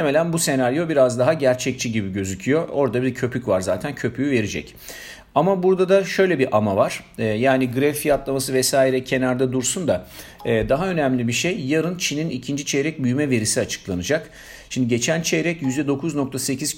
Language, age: Turkish, 50-69